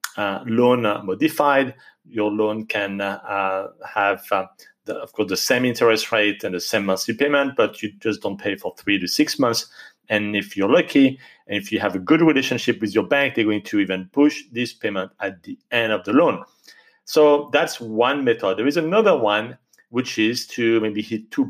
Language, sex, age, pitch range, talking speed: English, male, 40-59, 105-150 Hz, 205 wpm